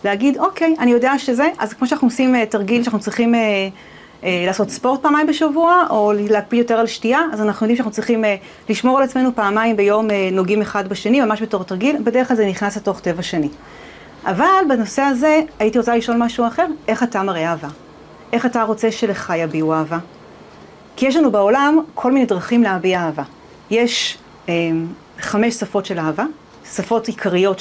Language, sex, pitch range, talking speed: Hebrew, female, 200-265 Hz, 180 wpm